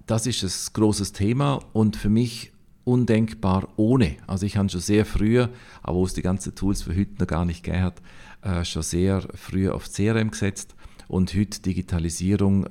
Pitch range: 85-100 Hz